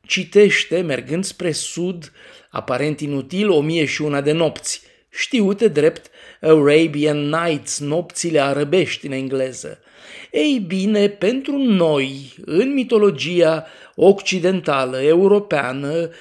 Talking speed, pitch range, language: 105 wpm, 145-200 Hz, Romanian